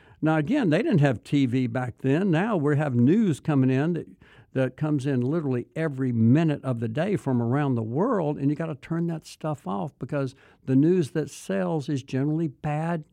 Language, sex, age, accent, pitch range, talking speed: English, male, 60-79, American, 130-165 Hz, 200 wpm